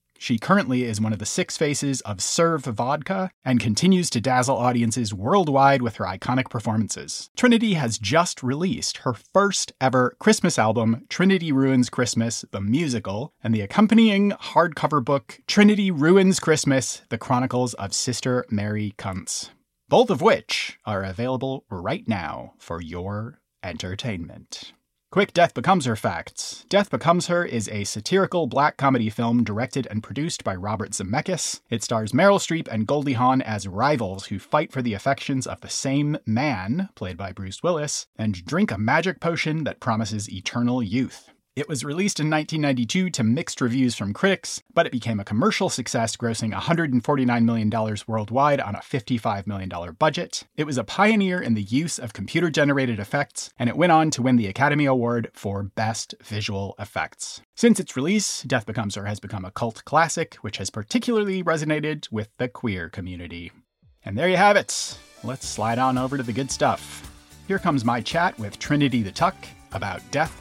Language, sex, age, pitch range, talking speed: English, male, 30-49, 110-155 Hz, 170 wpm